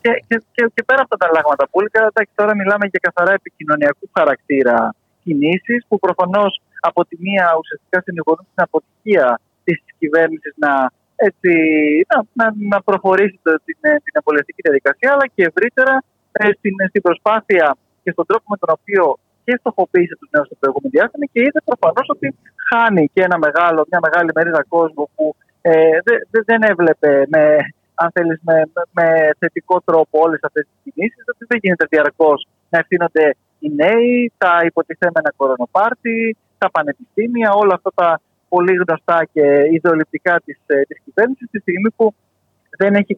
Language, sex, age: Greek, male, 30-49